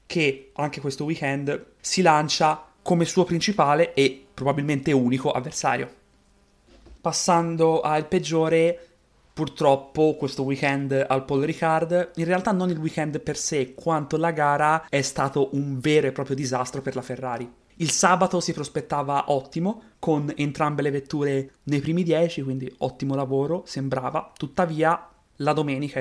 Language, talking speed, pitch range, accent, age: Italian, 140 wpm, 135-160 Hz, native, 30-49